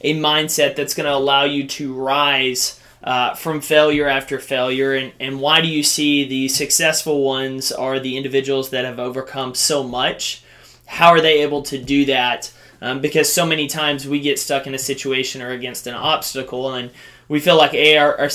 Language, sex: English, male